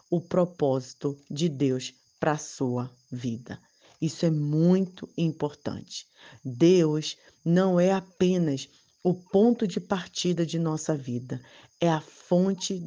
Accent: Brazilian